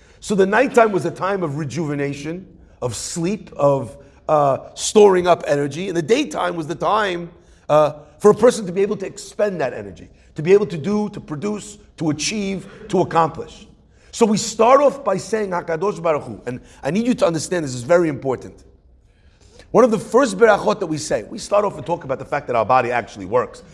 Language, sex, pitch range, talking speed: English, male, 160-230 Hz, 205 wpm